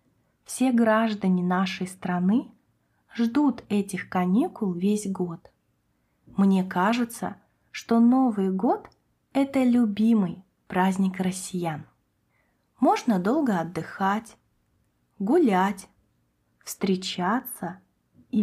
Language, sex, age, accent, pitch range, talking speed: Russian, female, 20-39, native, 185-235 Hz, 80 wpm